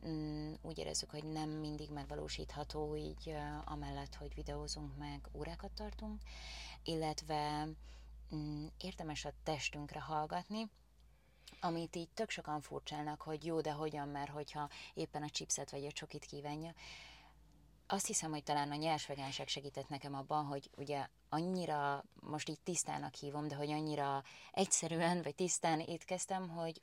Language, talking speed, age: Hungarian, 145 wpm, 20-39